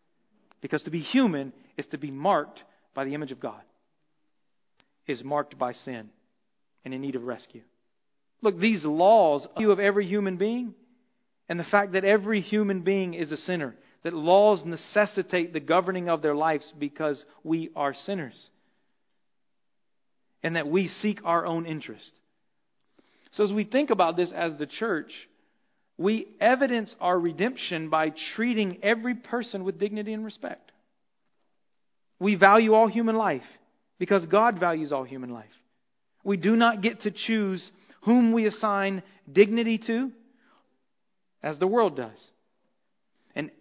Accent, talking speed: American, 145 wpm